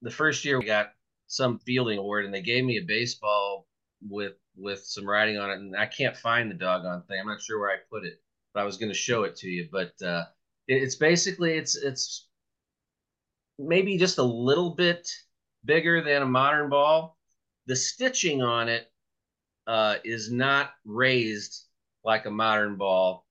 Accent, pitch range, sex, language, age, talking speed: American, 95-130 Hz, male, English, 30-49, 185 wpm